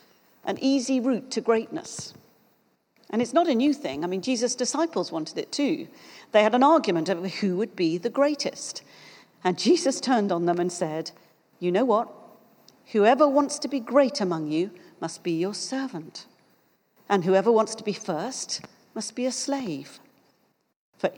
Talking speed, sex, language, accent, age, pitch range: 170 wpm, female, English, British, 50-69, 190-275 Hz